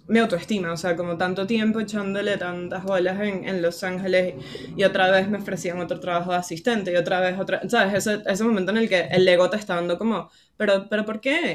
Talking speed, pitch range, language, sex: 230 wpm, 175-215 Hz, Spanish, female